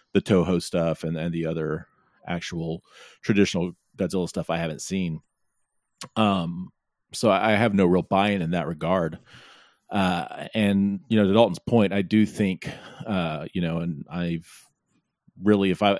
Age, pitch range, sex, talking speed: 40-59, 85-100 Hz, male, 165 wpm